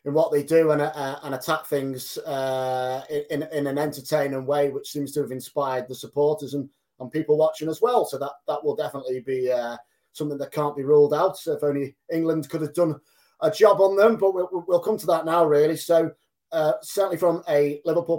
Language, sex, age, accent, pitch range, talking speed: English, male, 30-49, British, 140-160 Hz, 220 wpm